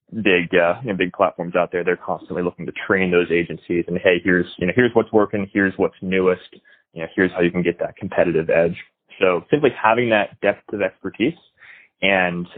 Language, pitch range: English, 85-95 Hz